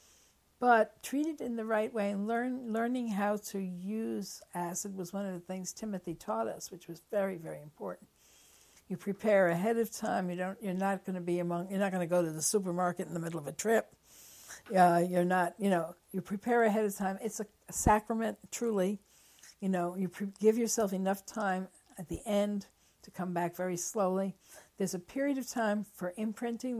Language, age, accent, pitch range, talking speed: English, 60-79, American, 185-225 Hz, 205 wpm